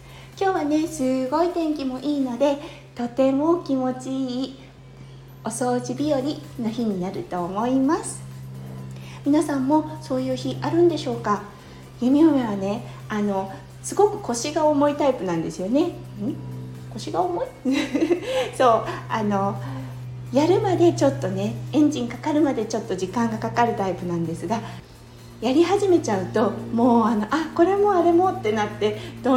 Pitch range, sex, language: 180-300 Hz, female, Japanese